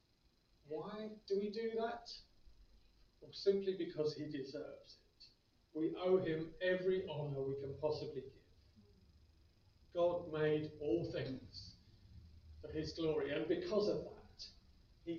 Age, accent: 40-59, British